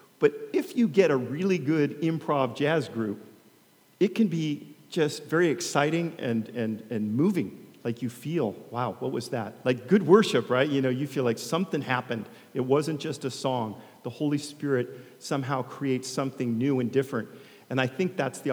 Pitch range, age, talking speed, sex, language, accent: 120-150 Hz, 40-59, 185 wpm, male, English, American